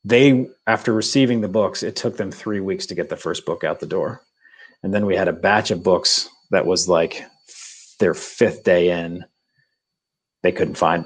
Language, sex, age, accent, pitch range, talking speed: English, male, 40-59, American, 90-110 Hz, 195 wpm